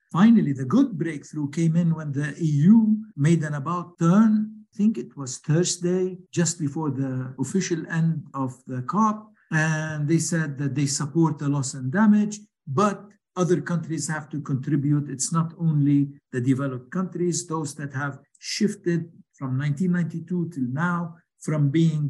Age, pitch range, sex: 60-79, 145-185 Hz, male